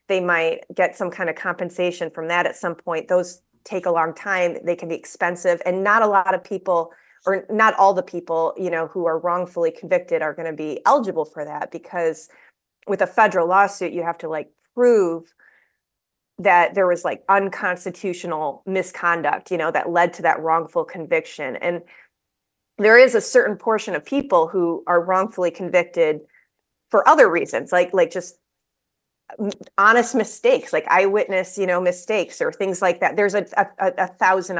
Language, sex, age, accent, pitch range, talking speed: English, female, 30-49, American, 165-195 Hz, 180 wpm